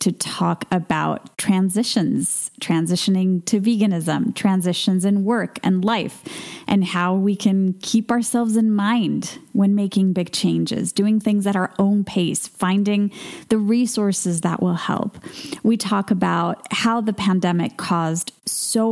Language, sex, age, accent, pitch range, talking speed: English, female, 10-29, American, 190-235 Hz, 140 wpm